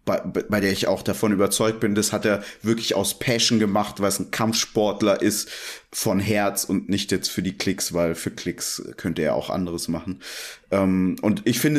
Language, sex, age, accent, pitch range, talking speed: German, male, 30-49, German, 100-125 Hz, 205 wpm